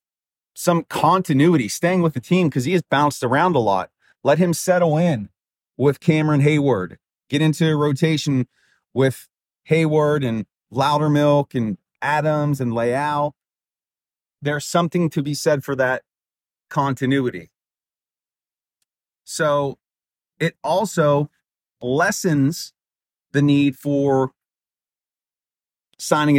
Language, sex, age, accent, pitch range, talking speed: English, male, 30-49, American, 140-180 Hz, 110 wpm